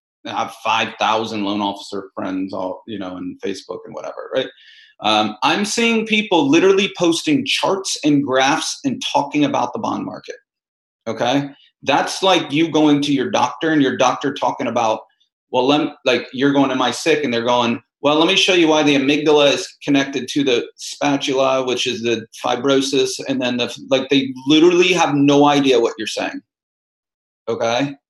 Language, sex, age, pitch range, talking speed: English, male, 30-49, 125-165 Hz, 175 wpm